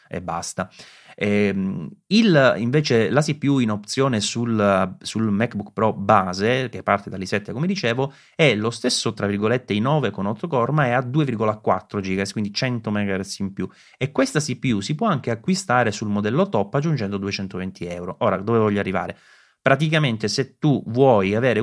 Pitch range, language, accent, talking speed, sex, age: 95-125 Hz, Italian, native, 165 wpm, male, 30-49